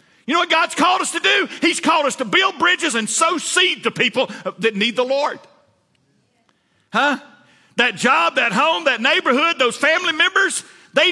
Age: 50-69